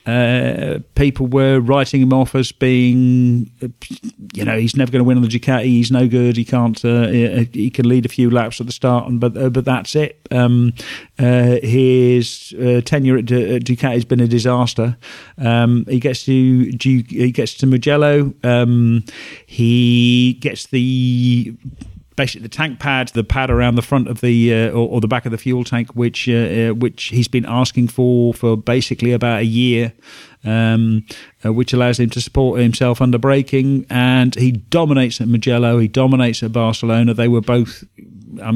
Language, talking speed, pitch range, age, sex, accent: English, 185 wpm, 115-130 Hz, 50-69, male, British